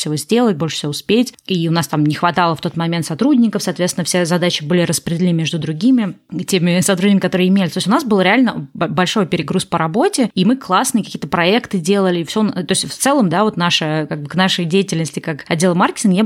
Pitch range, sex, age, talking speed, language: 170-205 Hz, female, 20-39, 215 wpm, Russian